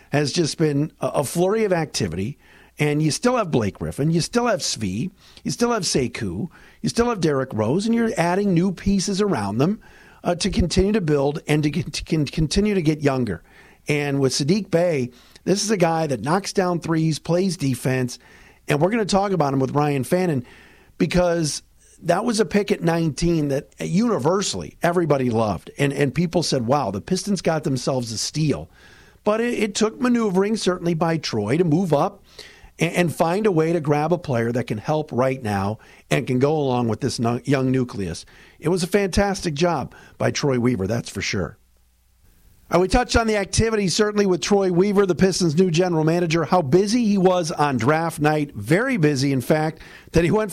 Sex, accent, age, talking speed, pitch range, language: male, American, 50-69, 190 wpm, 140-190 Hz, English